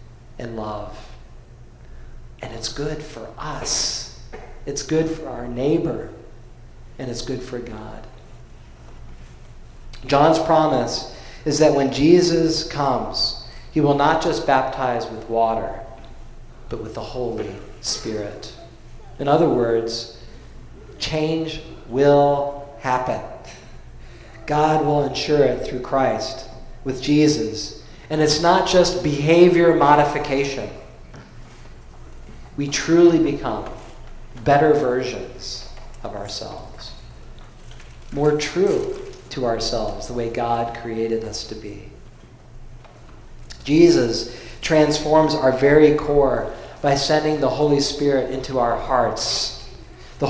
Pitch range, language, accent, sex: 115-150 Hz, English, American, male